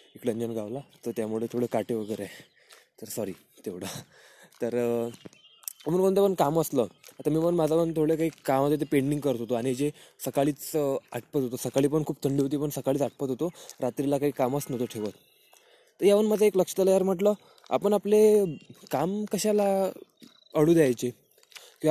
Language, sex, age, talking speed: Marathi, male, 20-39, 160 wpm